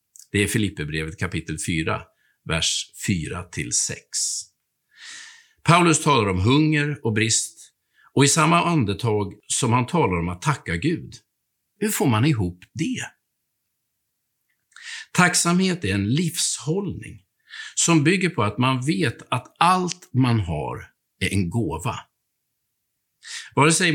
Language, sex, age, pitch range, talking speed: Swedish, male, 50-69, 115-165 Hz, 120 wpm